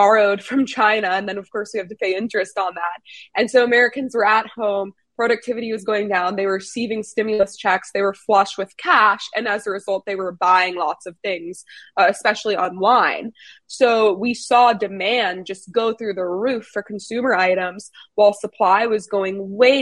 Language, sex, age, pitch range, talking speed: English, female, 20-39, 195-230 Hz, 195 wpm